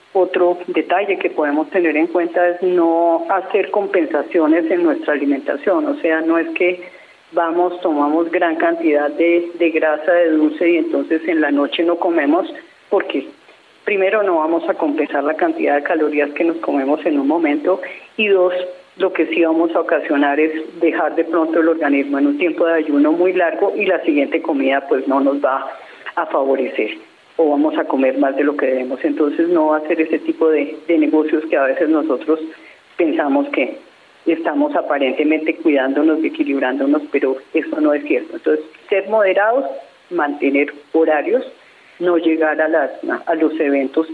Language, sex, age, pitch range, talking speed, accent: Spanish, female, 40-59, 145-175 Hz, 175 wpm, Colombian